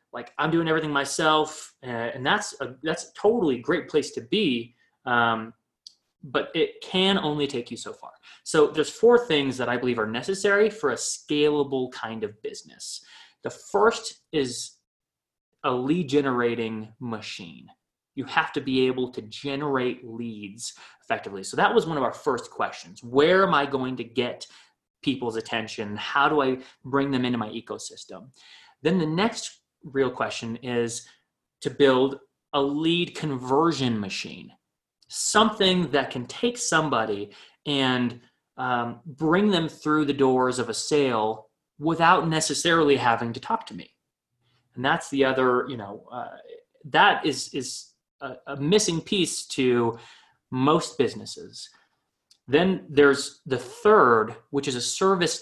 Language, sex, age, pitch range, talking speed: English, male, 30-49, 120-155 Hz, 150 wpm